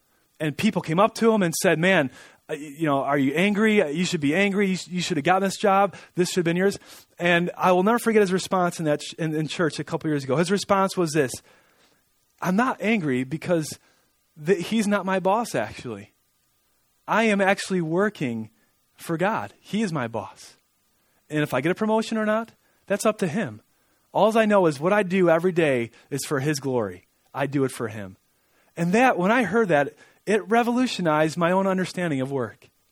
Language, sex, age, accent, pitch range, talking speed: English, male, 30-49, American, 145-195 Hz, 200 wpm